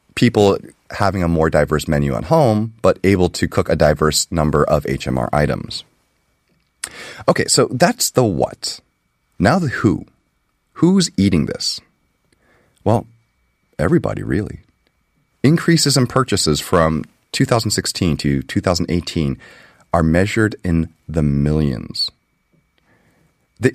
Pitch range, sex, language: 75-110 Hz, male, Korean